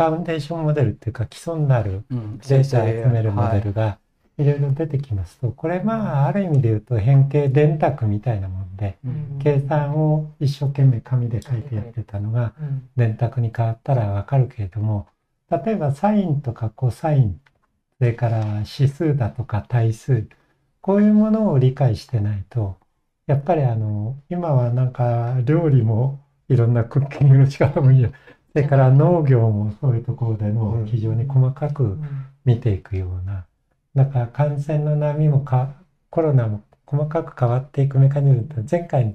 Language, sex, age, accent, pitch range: Japanese, male, 60-79, native, 115-150 Hz